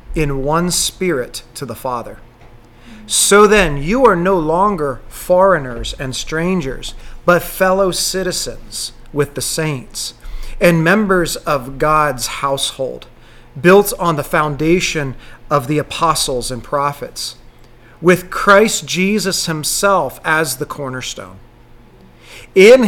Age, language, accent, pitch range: 40-59, English, American, 130-175 Hz